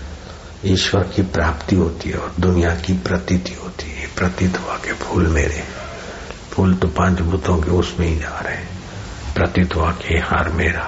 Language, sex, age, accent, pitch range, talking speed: Hindi, male, 60-79, native, 85-95 Hz, 170 wpm